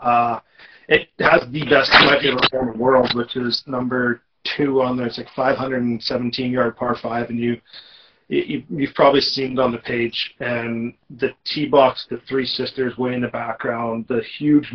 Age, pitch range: 30-49, 120-140 Hz